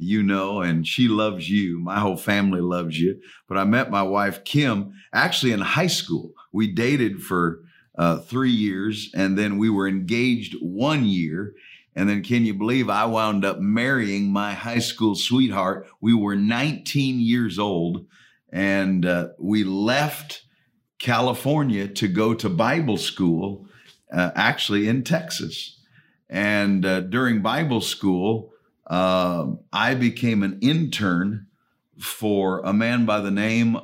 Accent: American